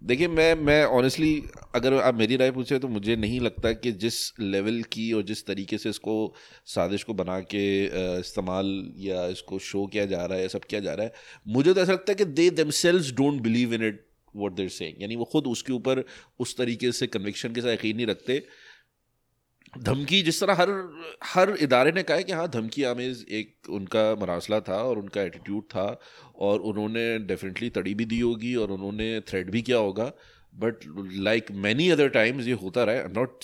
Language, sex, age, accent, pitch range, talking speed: English, male, 30-49, Indian, 100-130 Hz, 195 wpm